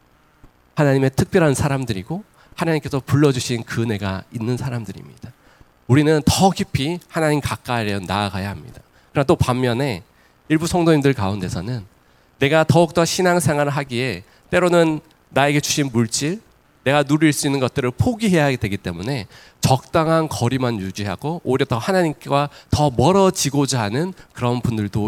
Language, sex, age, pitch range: Korean, male, 40-59, 110-150 Hz